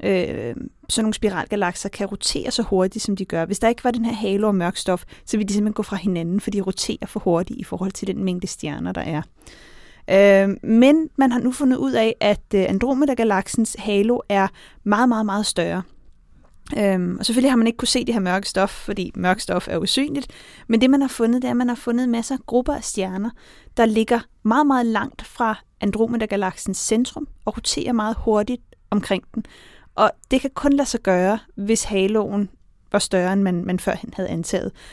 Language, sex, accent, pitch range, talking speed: Danish, female, native, 195-240 Hz, 205 wpm